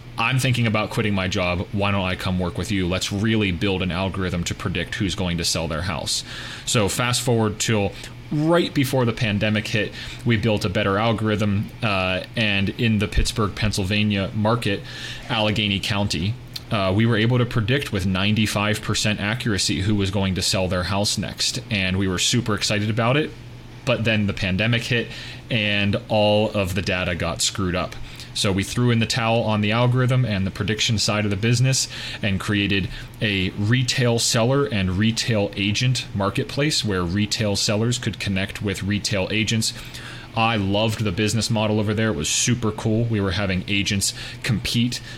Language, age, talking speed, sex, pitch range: English, 30-49, 180 wpm, male, 100-120 Hz